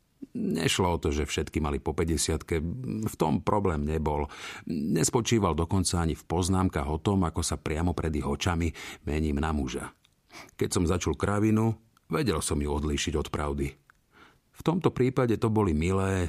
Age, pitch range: 50-69, 75-105 Hz